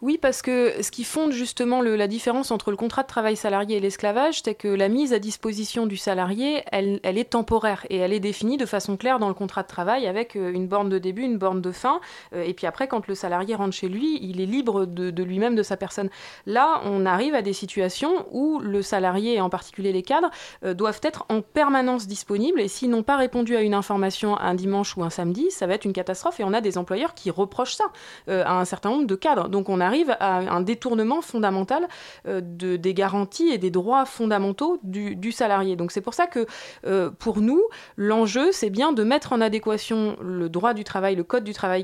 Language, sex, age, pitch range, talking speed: French, female, 20-39, 190-240 Hz, 235 wpm